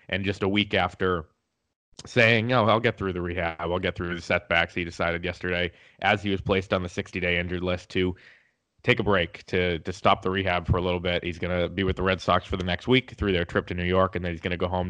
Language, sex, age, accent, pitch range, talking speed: English, male, 20-39, American, 90-100 Hz, 270 wpm